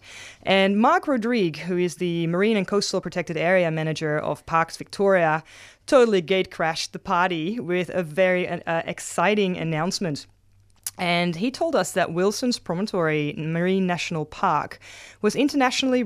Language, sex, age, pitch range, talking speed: English, female, 20-39, 165-205 Hz, 140 wpm